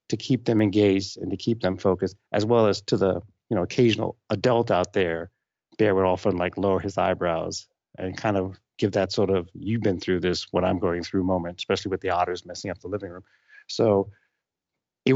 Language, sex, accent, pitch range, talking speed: English, male, American, 100-135 Hz, 215 wpm